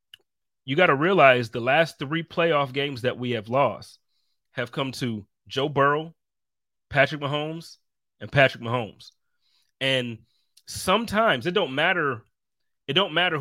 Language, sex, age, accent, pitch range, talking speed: English, male, 30-49, American, 125-165 Hz, 140 wpm